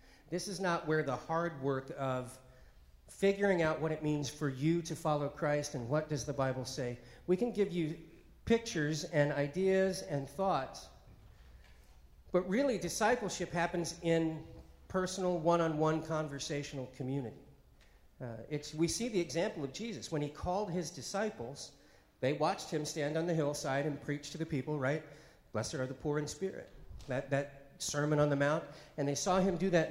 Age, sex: 40-59, male